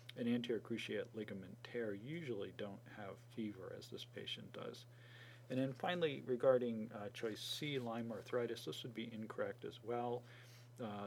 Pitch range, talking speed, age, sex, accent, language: 110-125 Hz, 150 wpm, 40-59, male, American, English